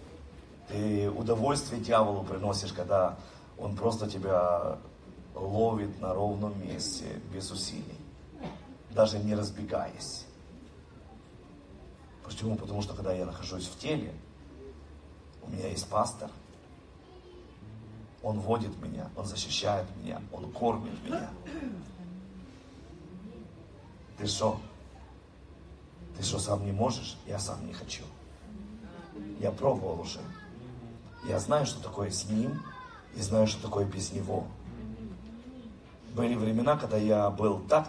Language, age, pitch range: Russian, 40-59, 95-115 Hz